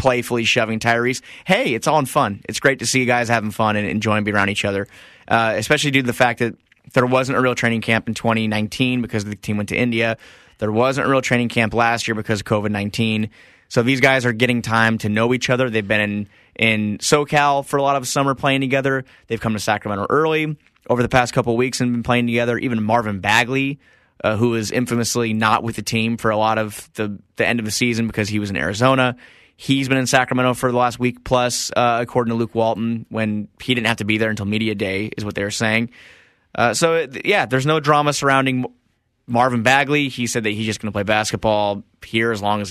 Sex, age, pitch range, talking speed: male, 20-39, 110-130 Hz, 235 wpm